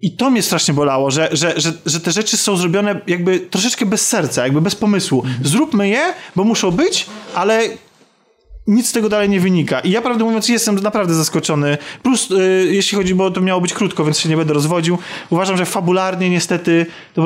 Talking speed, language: 205 wpm, Polish